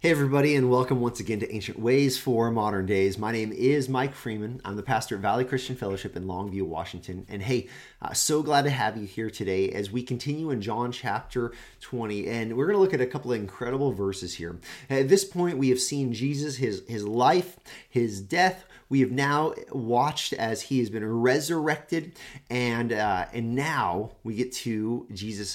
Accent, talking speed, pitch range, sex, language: American, 200 wpm, 105-140 Hz, male, English